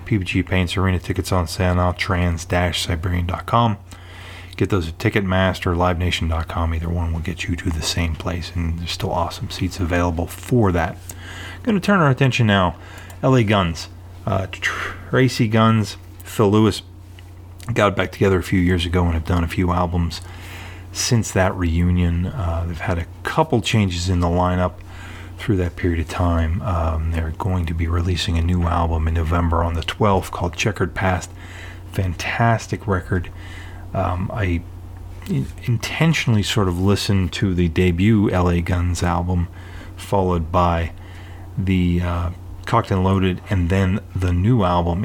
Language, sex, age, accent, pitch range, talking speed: English, male, 30-49, American, 90-100 Hz, 155 wpm